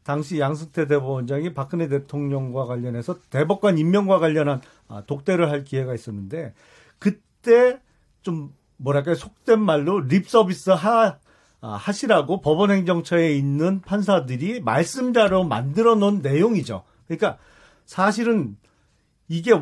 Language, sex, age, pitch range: Korean, male, 40-59, 145-200 Hz